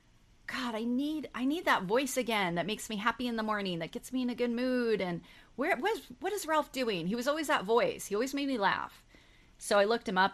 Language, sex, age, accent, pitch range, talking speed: English, female, 30-49, American, 170-245 Hz, 260 wpm